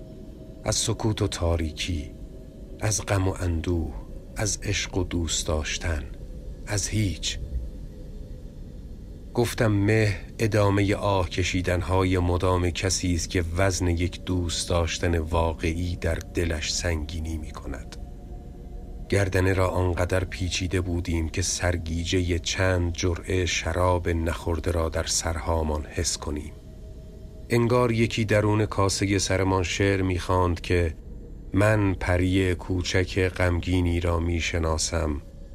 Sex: male